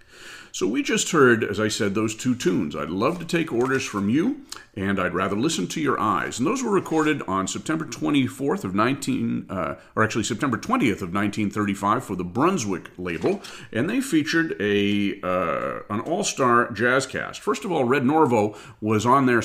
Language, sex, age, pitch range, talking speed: English, male, 40-59, 95-125 Hz, 190 wpm